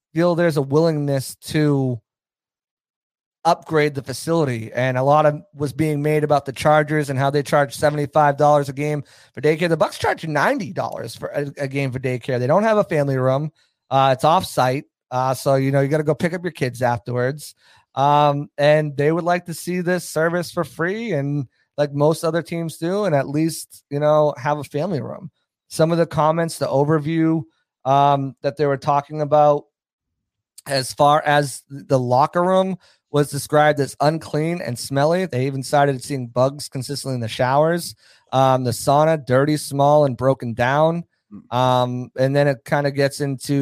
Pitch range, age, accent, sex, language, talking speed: 135-155 Hz, 30-49, American, male, English, 185 wpm